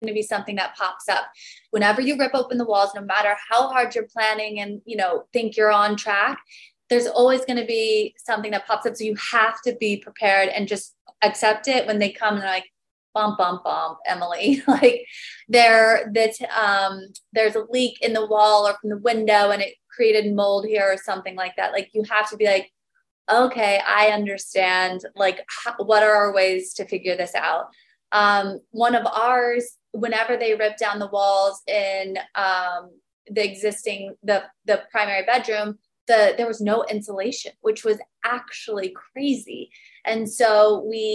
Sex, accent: female, American